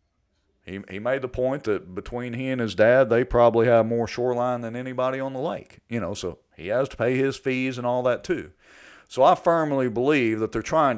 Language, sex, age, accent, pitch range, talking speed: English, male, 40-59, American, 110-135 Hz, 225 wpm